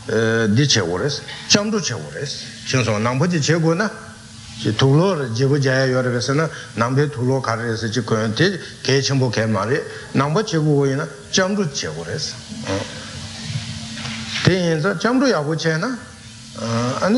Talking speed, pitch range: 135 wpm, 115-150 Hz